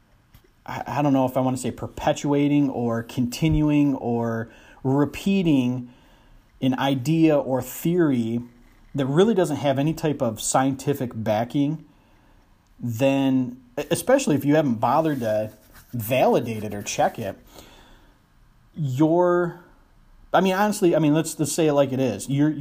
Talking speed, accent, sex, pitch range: 145 wpm, American, male, 120-150 Hz